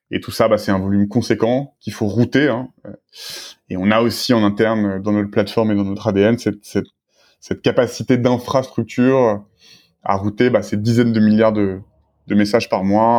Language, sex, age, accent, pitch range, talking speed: French, male, 20-39, French, 105-120 Hz, 190 wpm